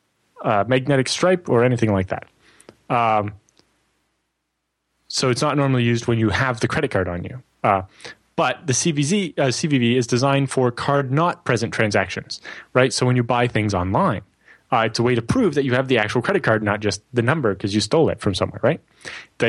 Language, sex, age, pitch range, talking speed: English, male, 20-39, 115-150 Hz, 205 wpm